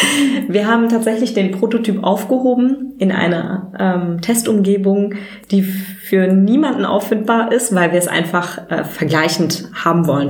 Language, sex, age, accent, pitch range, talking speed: German, female, 20-39, German, 175-220 Hz, 135 wpm